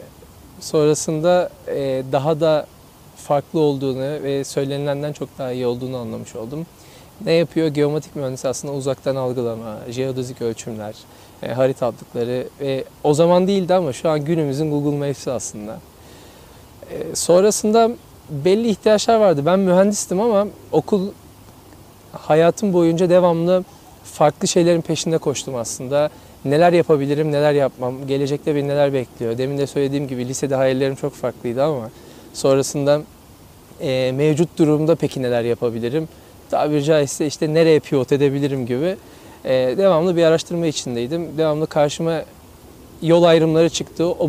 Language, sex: Turkish, male